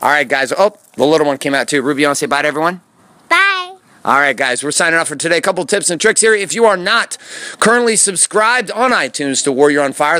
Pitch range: 145-195 Hz